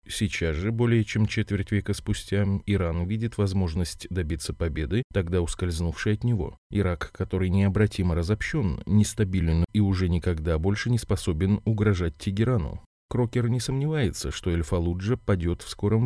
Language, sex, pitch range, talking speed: Russian, male, 85-115 Hz, 140 wpm